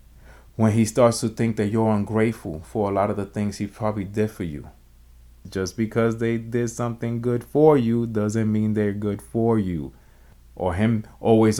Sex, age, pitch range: male, 30-49, 95-120 Hz